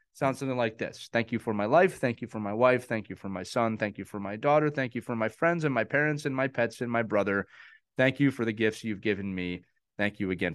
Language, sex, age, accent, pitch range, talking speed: English, male, 30-49, American, 110-140 Hz, 280 wpm